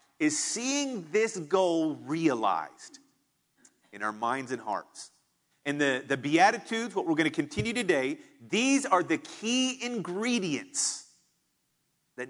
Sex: male